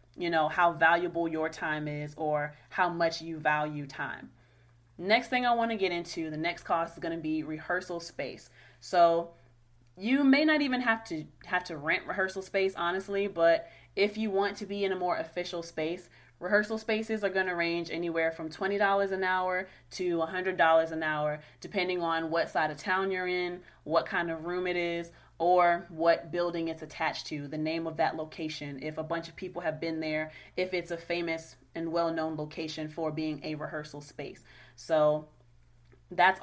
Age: 30-49